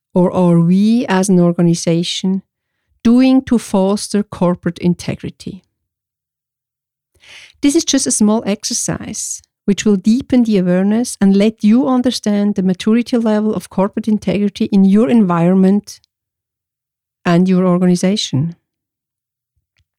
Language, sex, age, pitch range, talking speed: English, female, 60-79, 175-225 Hz, 115 wpm